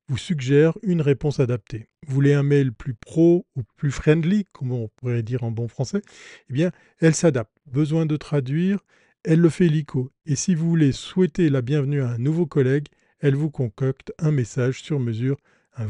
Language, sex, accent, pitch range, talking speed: French, male, French, 130-165 Hz, 190 wpm